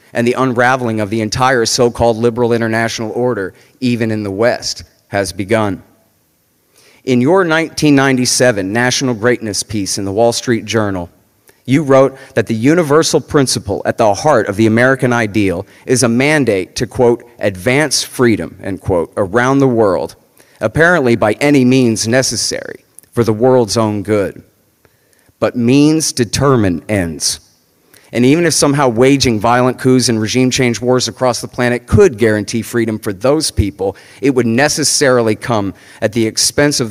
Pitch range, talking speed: 105-130 Hz, 155 wpm